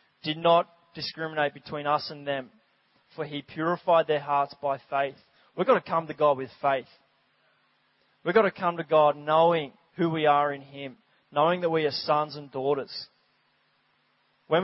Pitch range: 140-165 Hz